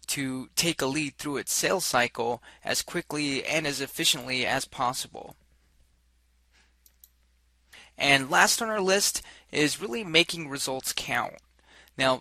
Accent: American